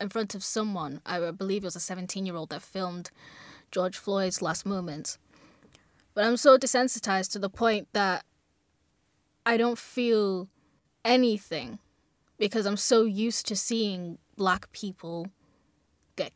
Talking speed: 145 wpm